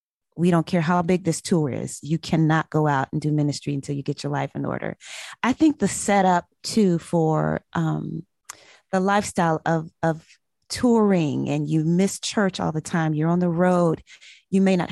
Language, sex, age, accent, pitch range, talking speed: English, female, 30-49, American, 160-190 Hz, 195 wpm